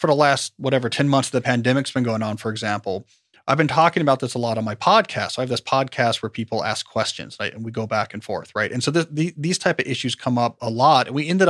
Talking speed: 285 wpm